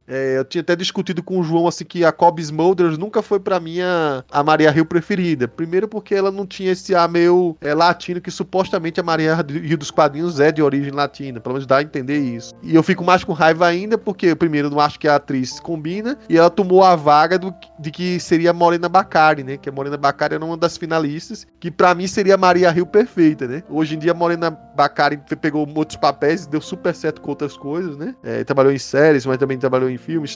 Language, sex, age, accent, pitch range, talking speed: Portuguese, male, 20-39, Brazilian, 150-190 Hz, 240 wpm